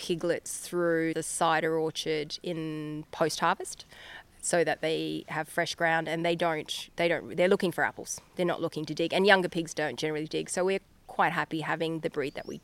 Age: 20-39